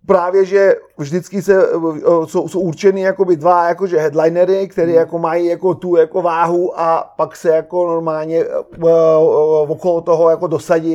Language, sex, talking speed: Czech, male, 165 wpm